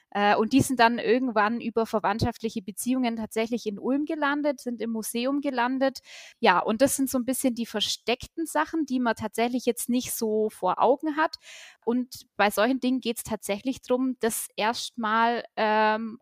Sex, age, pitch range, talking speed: female, 20-39, 205-250 Hz, 170 wpm